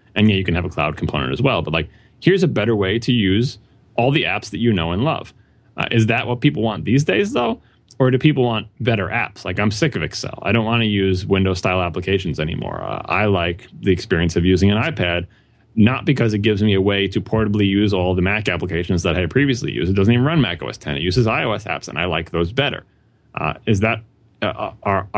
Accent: American